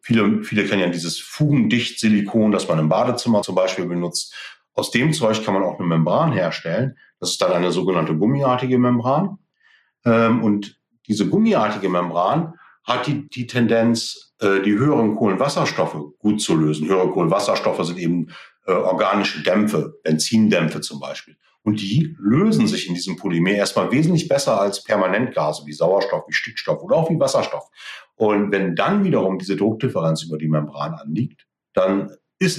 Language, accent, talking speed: German, German, 155 wpm